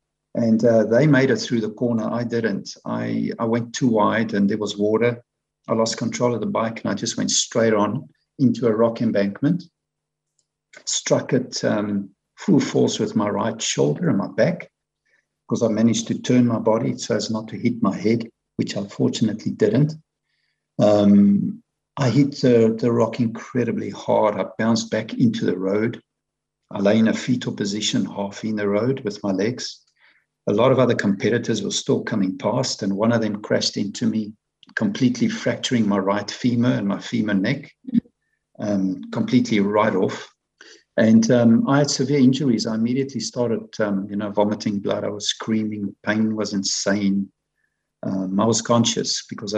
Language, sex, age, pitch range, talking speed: English, male, 60-79, 105-125 Hz, 175 wpm